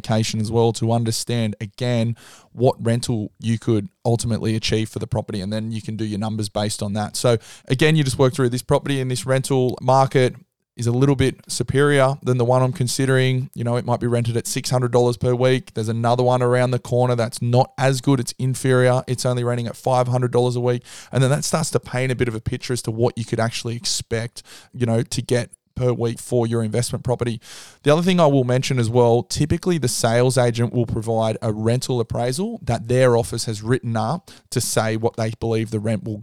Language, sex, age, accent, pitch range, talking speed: English, male, 20-39, Australian, 115-130 Hz, 220 wpm